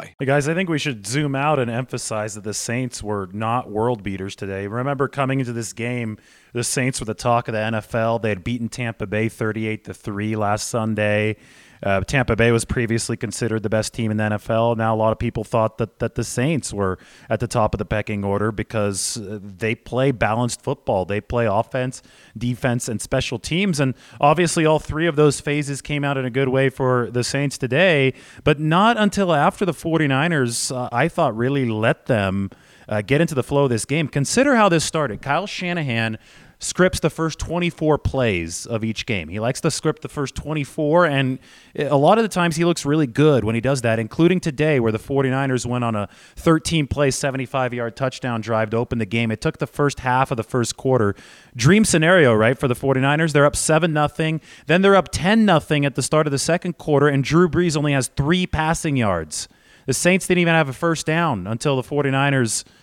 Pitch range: 115-150 Hz